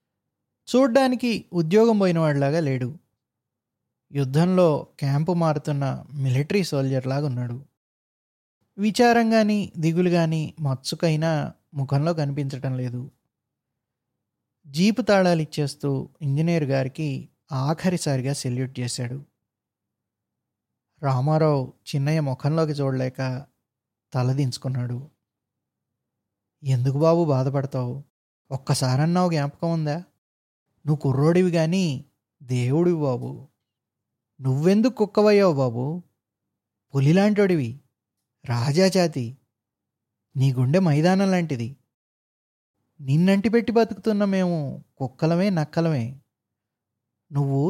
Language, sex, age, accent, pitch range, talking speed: Telugu, male, 20-39, native, 125-165 Hz, 75 wpm